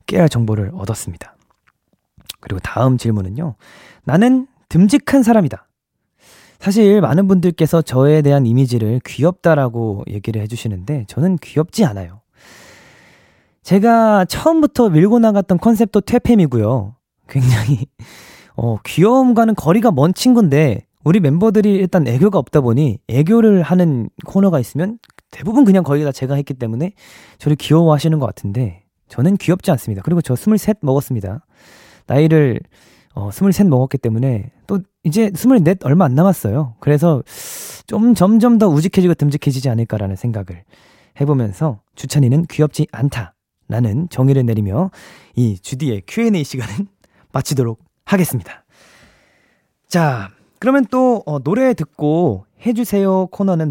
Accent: native